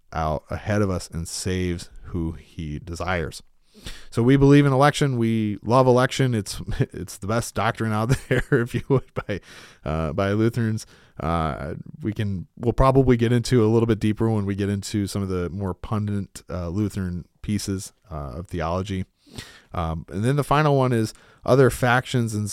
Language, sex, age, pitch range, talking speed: English, male, 30-49, 95-120 Hz, 180 wpm